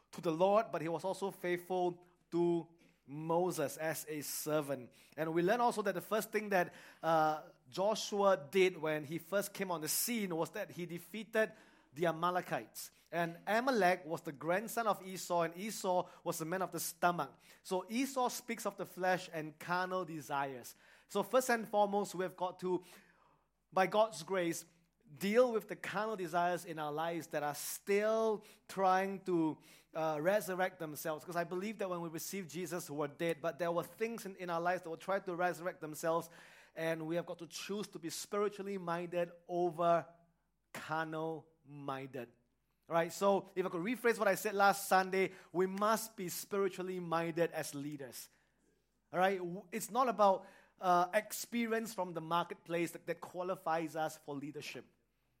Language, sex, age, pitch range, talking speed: English, male, 30-49, 165-195 Hz, 170 wpm